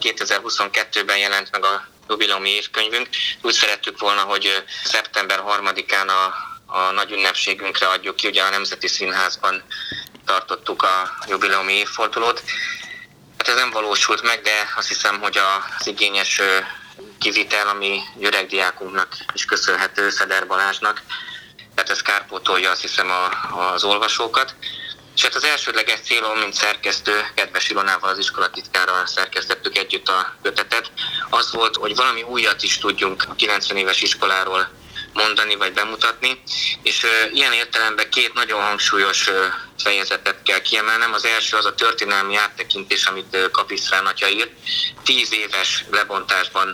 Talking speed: 130 wpm